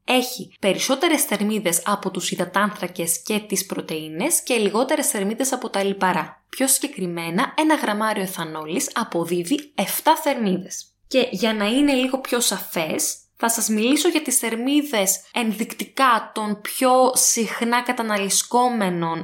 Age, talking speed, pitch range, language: 20-39, 130 wpm, 190-245 Hz, Greek